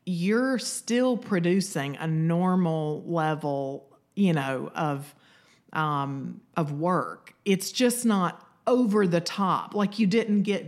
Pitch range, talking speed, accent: 150-195 Hz, 125 wpm, American